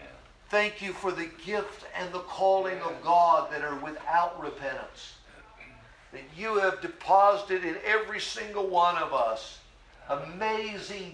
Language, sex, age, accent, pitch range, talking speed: English, male, 60-79, American, 145-195 Hz, 135 wpm